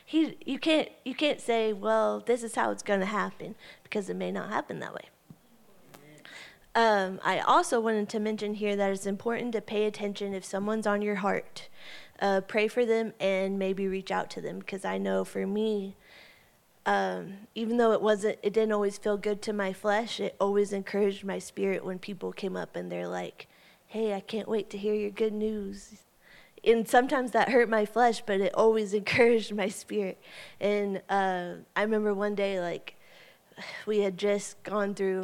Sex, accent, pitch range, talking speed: female, American, 195-225 Hz, 190 wpm